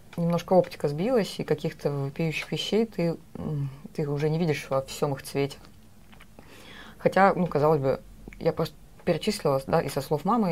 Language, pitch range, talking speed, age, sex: English, 140-170 Hz, 160 wpm, 20-39, female